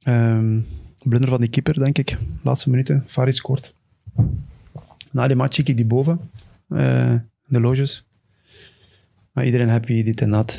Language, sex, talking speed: Dutch, male, 155 wpm